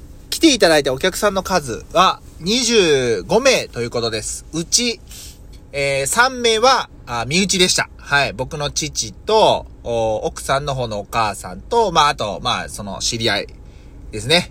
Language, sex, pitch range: Japanese, male, 120-200 Hz